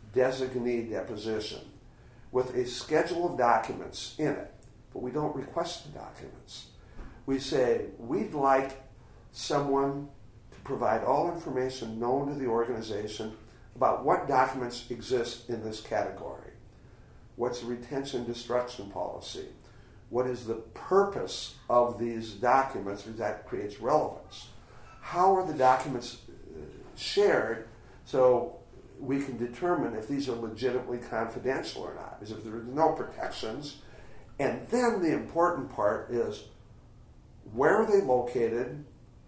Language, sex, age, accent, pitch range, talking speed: English, male, 50-69, American, 120-140 Hz, 125 wpm